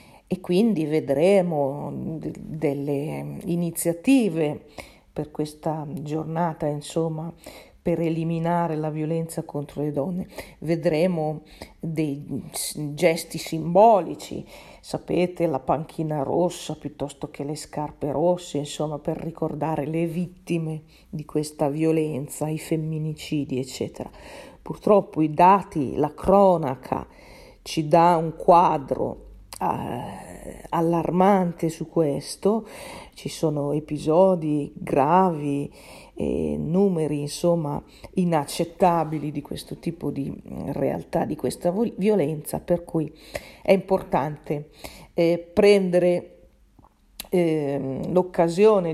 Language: Italian